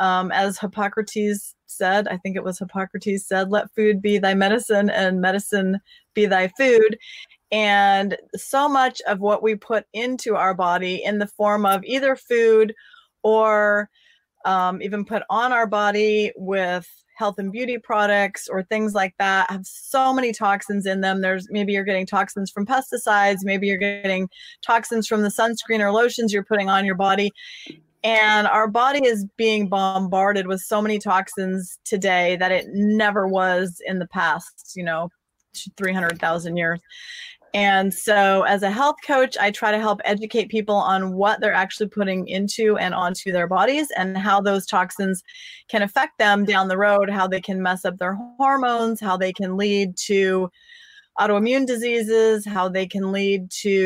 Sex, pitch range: female, 190-220 Hz